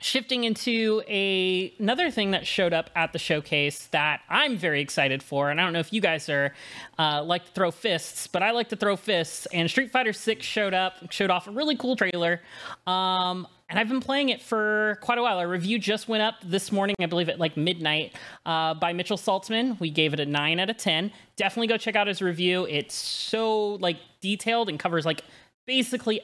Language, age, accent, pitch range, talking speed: English, 30-49, American, 165-220 Hz, 215 wpm